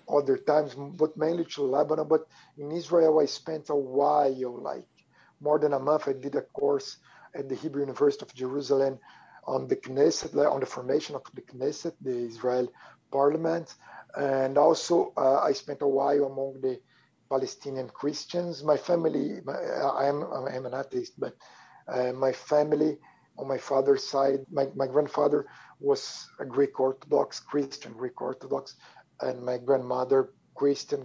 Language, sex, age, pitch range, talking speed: English, male, 50-69, 135-160 Hz, 155 wpm